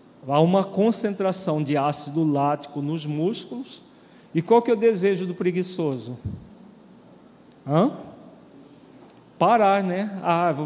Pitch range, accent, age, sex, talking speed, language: 150-195 Hz, Brazilian, 40-59, male, 105 wpm, Portuguese